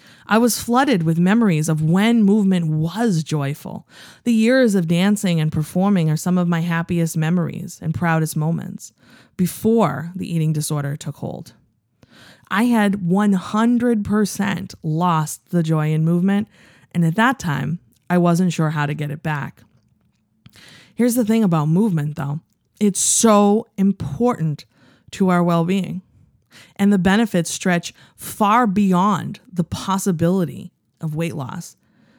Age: 20-39